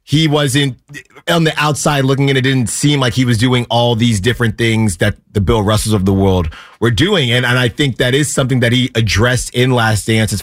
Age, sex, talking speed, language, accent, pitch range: 30-49, male, 235 wpm, English, American, 115-145 Hz